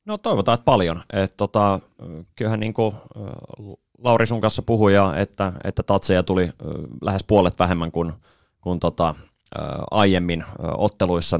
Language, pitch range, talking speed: Finnish, 80-100 Hz, 120 wpm